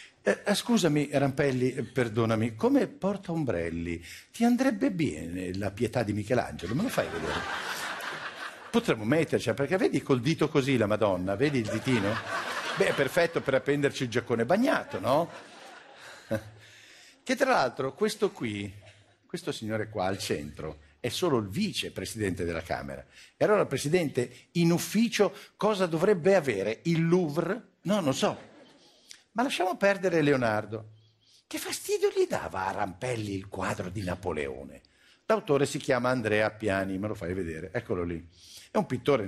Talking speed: 145 wpm